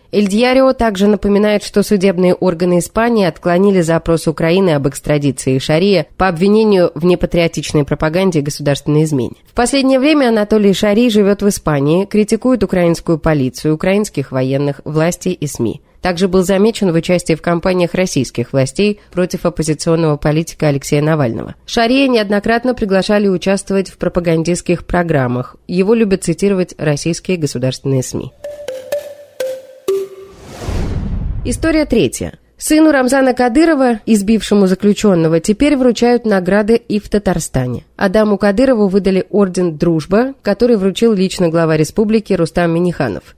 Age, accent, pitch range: 20-39, native, 160-220 Hz